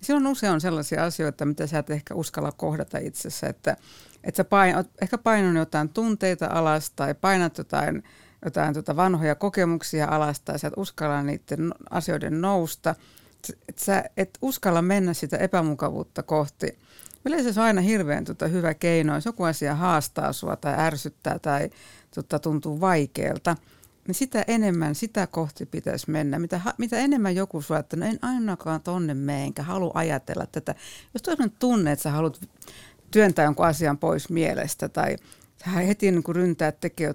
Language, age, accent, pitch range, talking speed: Finnish, 60-79, native, 155-200 Hz, 165 wpm